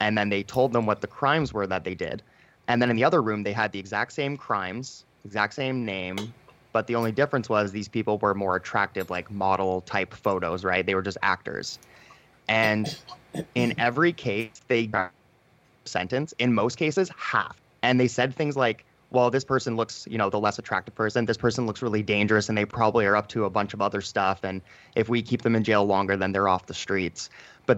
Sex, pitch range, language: male, 100-125 Hz, English